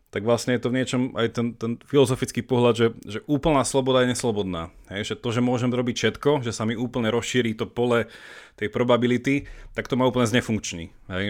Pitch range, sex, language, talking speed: 110-125 Hz, male, Slovak, 205 wpm